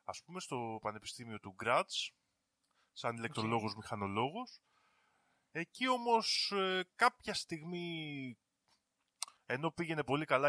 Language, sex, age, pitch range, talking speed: Greek, male, 20-39, 115-180 Hz, 90 wpm